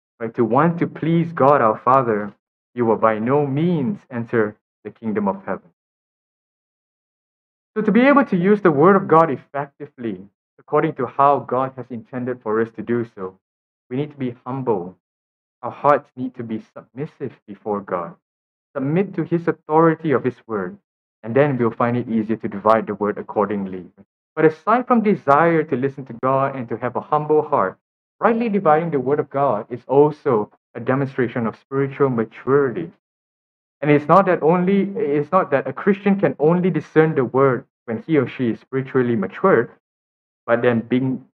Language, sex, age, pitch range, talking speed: English, male, 20-39, 110-150 Hz, 180 wpm